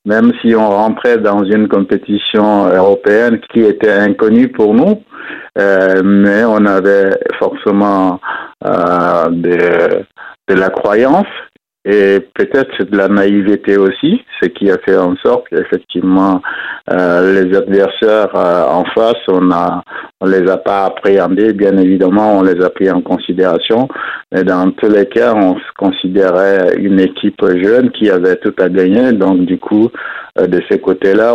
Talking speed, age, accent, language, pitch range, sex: 150 wpm, 50-69, French, French, 90-100 Hz, male